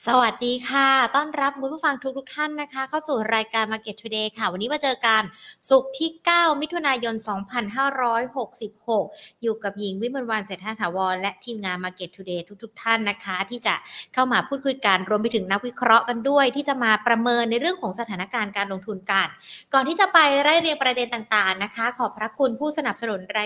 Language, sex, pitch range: Thai, female, 200-260 Hz